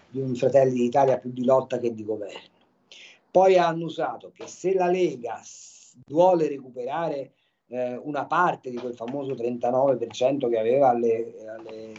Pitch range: 130-175 Hz